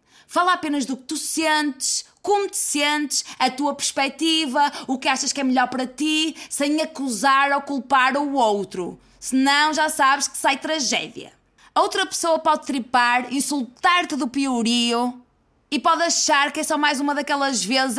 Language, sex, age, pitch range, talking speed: Portuguese, female, 20-39, 255-295 Hz, 165 wpm